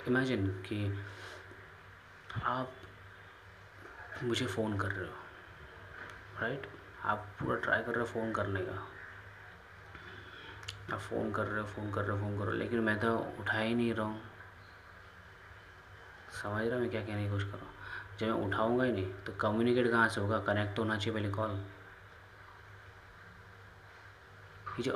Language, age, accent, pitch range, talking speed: Hindi, 20-39, native, 95-110 Hz, 155 wpm